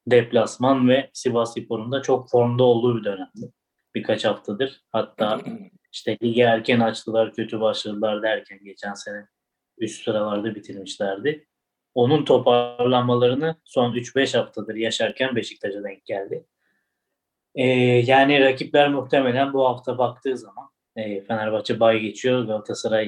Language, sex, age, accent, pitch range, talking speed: Turkish, male, 20-39, native, 115-130 Hz, 120 wpm